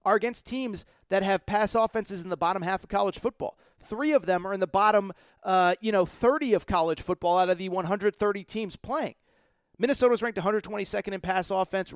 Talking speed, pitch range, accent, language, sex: 200 wpm, 185-240 Hz, American, English, male